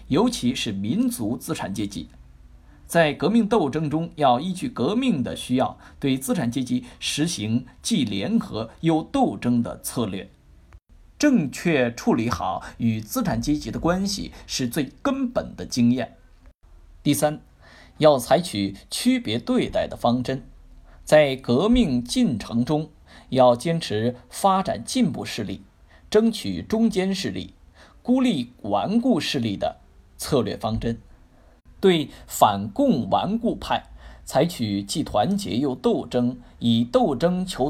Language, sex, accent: Chinese, male, native